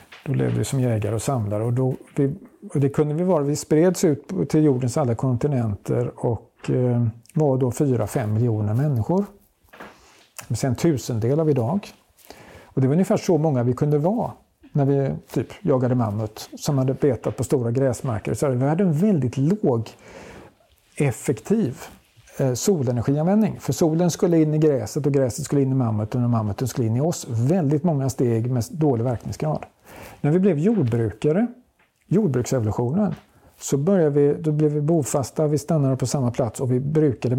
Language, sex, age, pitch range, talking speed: Swedish, male, 50-69, 120-155 Hz, 170 wpm